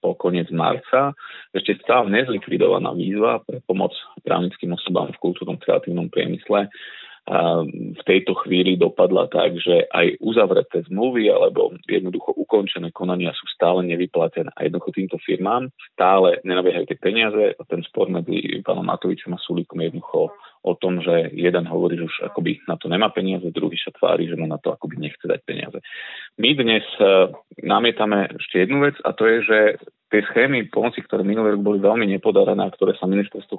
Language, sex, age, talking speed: Slovak, male, 30-49, 165 wpm